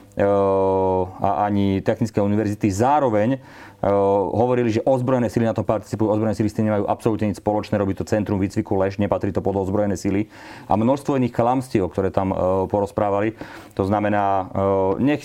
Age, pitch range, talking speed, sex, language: 40-59, 100-110 Hz, 155 wpm, male, Slovak